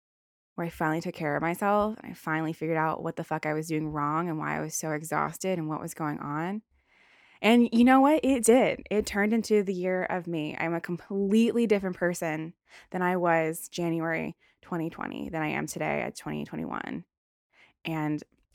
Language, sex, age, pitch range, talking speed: English, female, 20-39, 160-210 Hz, 190 wpm